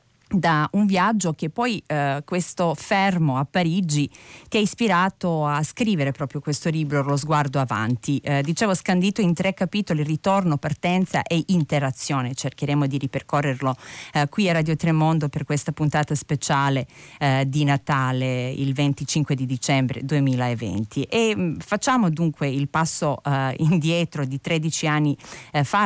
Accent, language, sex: native, Italian, female